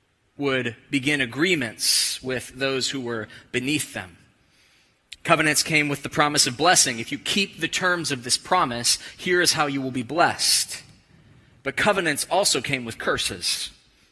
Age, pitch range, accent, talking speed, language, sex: 20-39, 115-140 Hz, American, 155 wpm, English, male